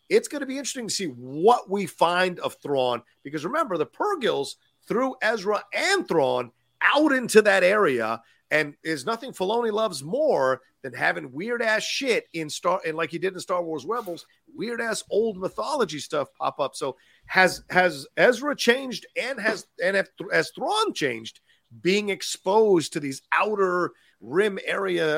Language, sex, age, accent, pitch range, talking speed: English, male, 50-69, American, 135-220 Hz, 165 wpm